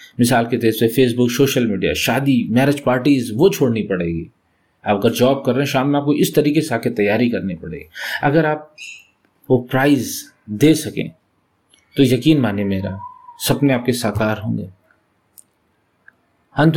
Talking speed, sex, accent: 150 wpm, male, native